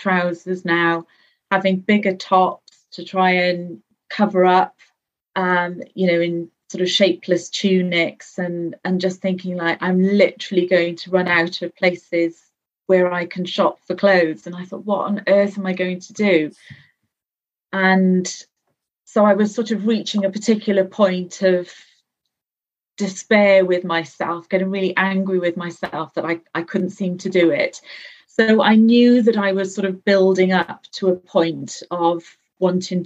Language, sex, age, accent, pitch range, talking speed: English, female, 40-59, British, 175-190 Hz, 165 wpm